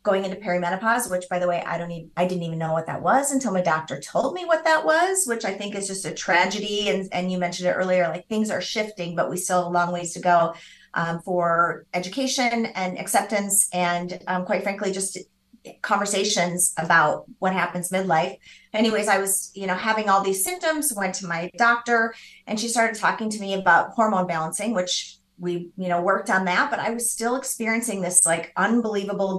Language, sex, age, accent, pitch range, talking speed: English, female, 30-49, American, 180-225 Hz, 210 wpm